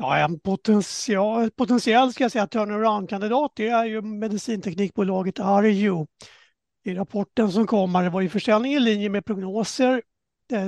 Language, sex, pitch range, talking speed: Swedish, male, 190-230 Hz, 140 wpm